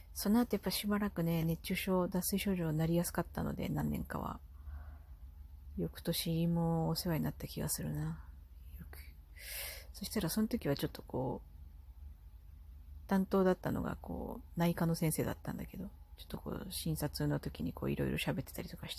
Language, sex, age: Japanese, female, 40-59